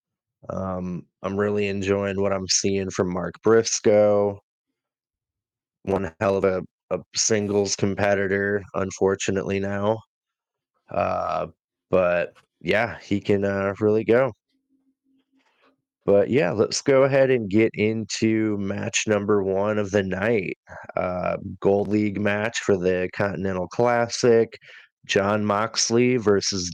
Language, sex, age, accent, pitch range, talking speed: English, male, 20-39, American, 95-110 Hz, 115 wpm